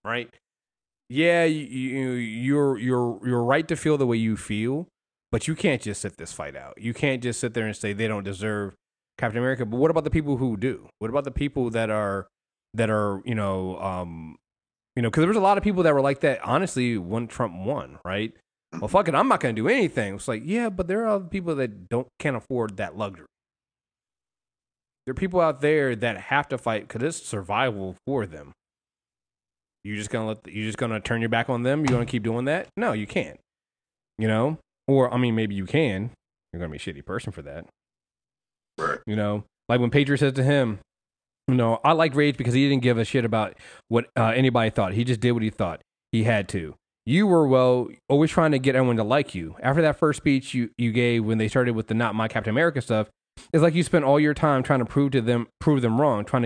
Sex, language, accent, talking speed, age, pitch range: male, English, American, 235 wpm, 30-49, 105-140 Hz